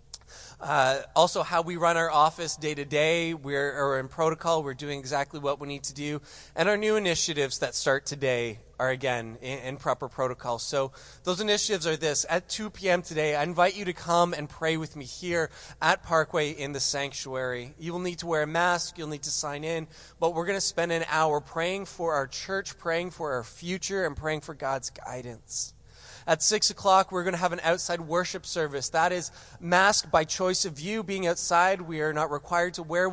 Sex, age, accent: male, 20-39, American